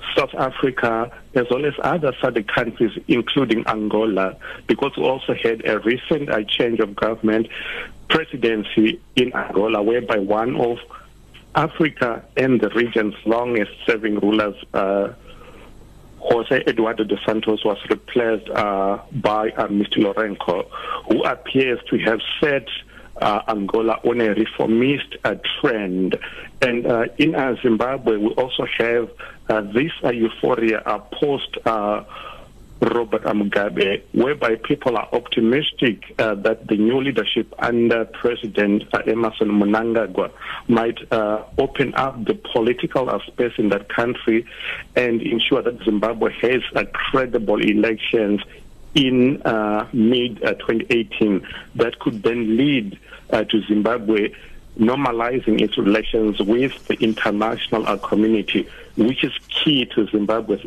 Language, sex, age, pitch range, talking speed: English, male, 60-79, 105-120 Hz, 125 wpm